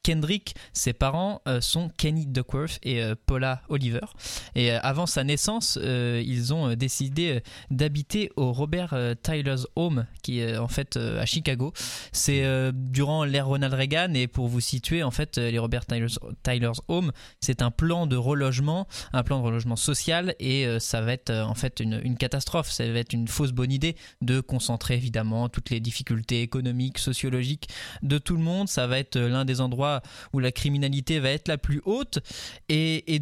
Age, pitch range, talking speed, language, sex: 20-39, 125-150 Hz, 175 wpm, French, male